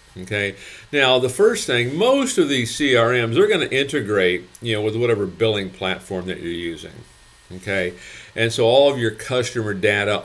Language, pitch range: English, 100-120 Hz